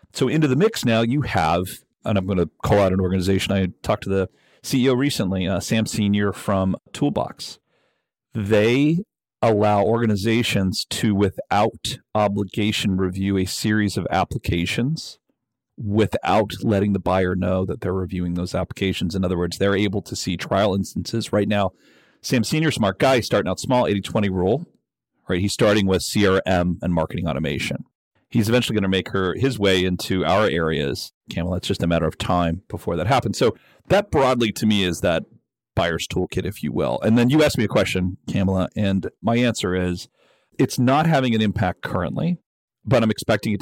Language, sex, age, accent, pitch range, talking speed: English, male, 40-59, American, 95-115 Hz, 180 wpm